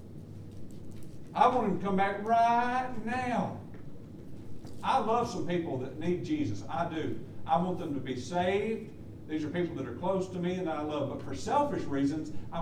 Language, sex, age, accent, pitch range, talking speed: English, male, 50-69, American, 125-195 Hz, 190 wpm